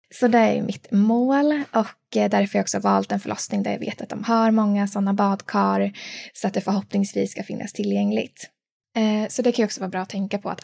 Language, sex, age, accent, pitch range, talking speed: Swedish, female, 20-39, native, 200-225 Hz, 230 wpm